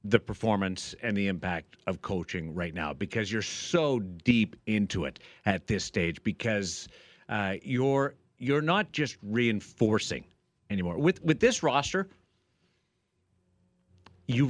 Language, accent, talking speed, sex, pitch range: English, American, 130 wpm, male, 90-120 Hz